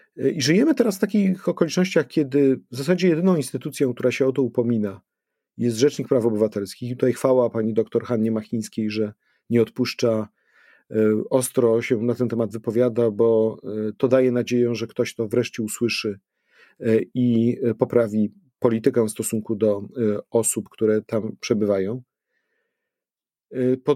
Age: 40-59